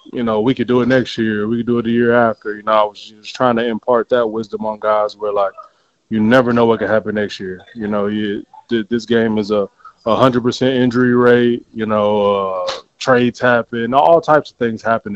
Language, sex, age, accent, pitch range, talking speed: English, male, 20-39, American, 105-120 Hz, 225 wpm